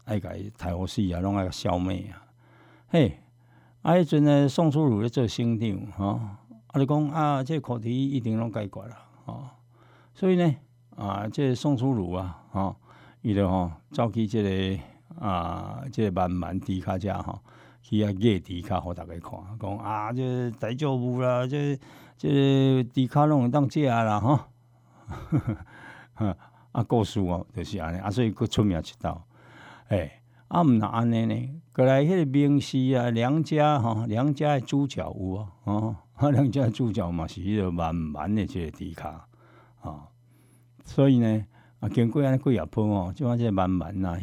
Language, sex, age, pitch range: Chinese, male, 60-79, 95-125 Hz